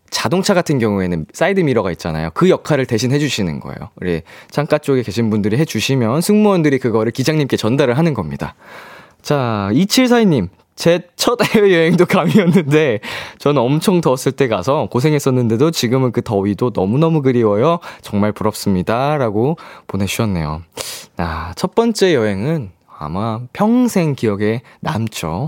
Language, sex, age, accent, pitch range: Korean, male, 20-39, native, 105-160 Hz